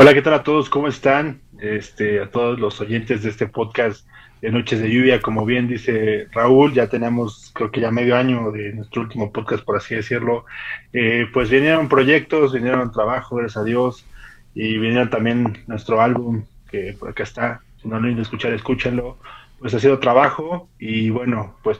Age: 20-39